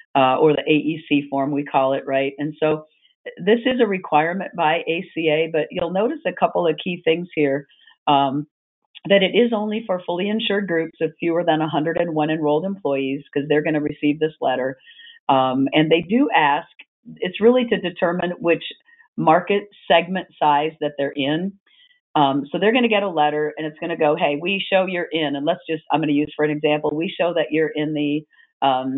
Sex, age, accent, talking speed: female, 50-69, American, 205 wpm